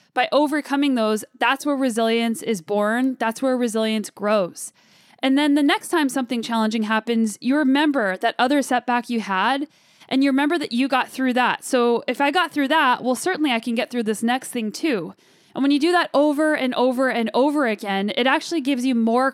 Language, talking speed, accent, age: English, 210 wpm, American, 10-29